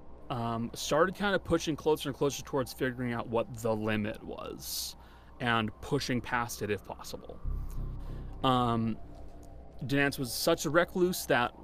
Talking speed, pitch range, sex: 145 wpm, 120-165 Hz, male